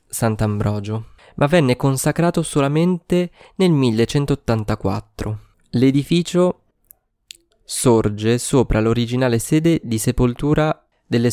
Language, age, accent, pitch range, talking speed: Italian, 20-39, native, 105-125 Hz, 80 wpm